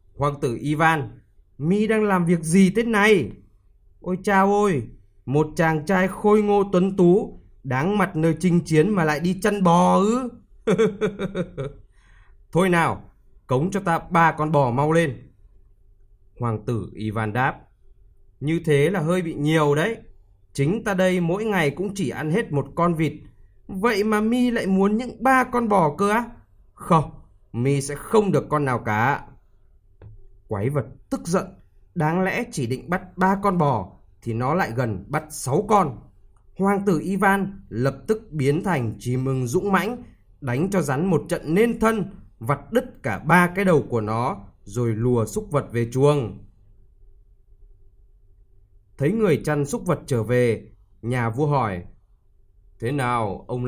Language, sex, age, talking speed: Vietnamese, male, 20-39, 165 wpm